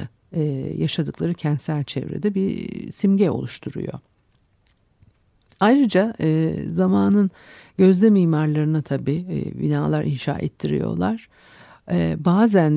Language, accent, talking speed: Turkish, native, 70 wpm